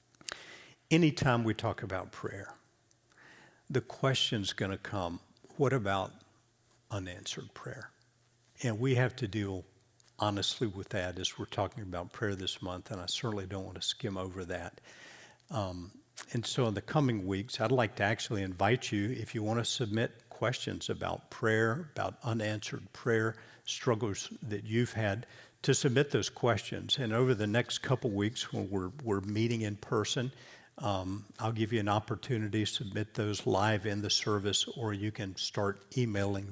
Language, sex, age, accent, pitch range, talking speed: English, male, 60-79, American, 100-125 Hz, 165 wpm